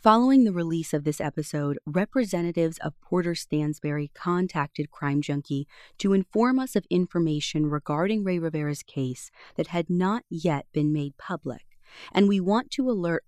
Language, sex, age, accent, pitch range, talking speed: English, female, 30-49, American, 145-185 Hz, 155 wpm